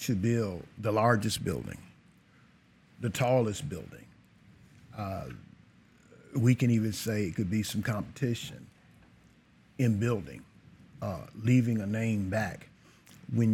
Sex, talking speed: male, 115 wpm